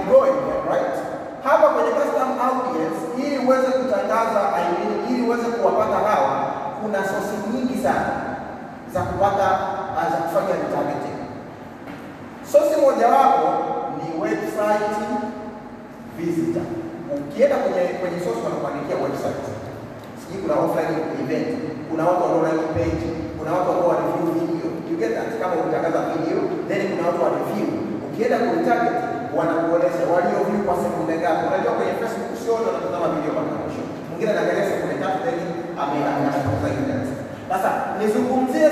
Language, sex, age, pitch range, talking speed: Swahili, male, 30-49, 175-265 Hz, 115 wpm